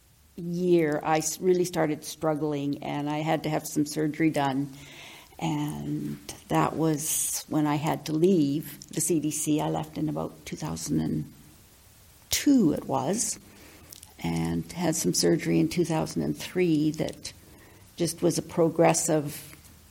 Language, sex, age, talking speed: English, female, 60-79, 125 wpm